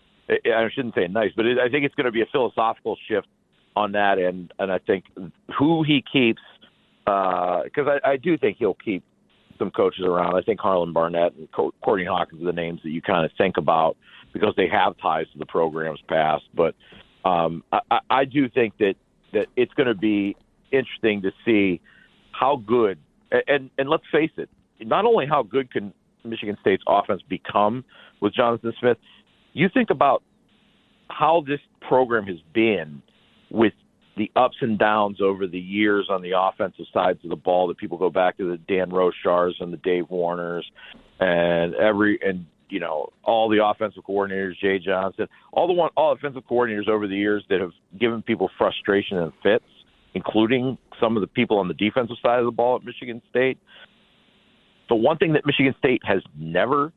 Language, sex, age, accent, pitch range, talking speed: English, male, 50-69, American, 95-135 Hz, 190 wpm